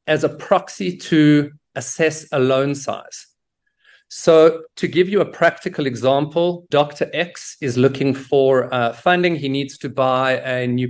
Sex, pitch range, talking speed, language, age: male, 135-170 Hz, 155 wpm, English, 40-59